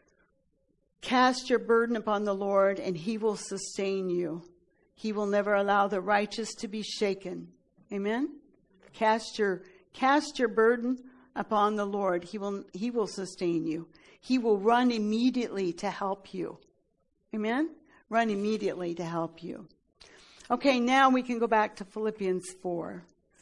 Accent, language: American, English